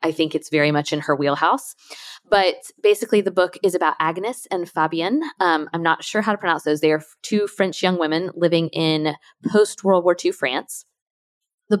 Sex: female